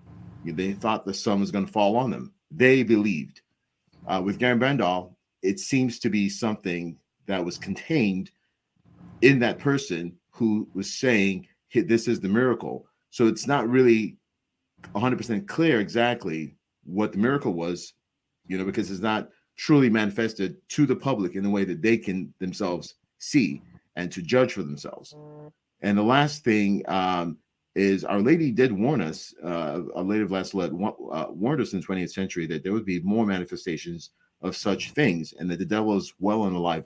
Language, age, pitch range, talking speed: English, 40-59, 90-115 Hz, 180 wpm